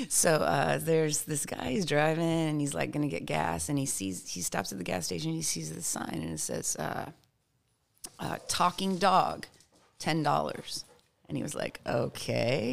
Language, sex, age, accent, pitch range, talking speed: English, female, 30-49, American, 130-170 Hz, 195 wpm